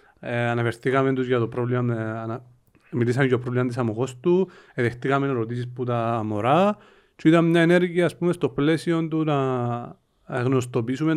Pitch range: 120-145 Hz